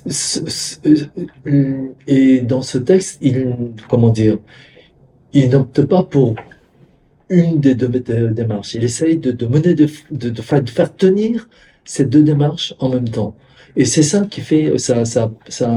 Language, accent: French, French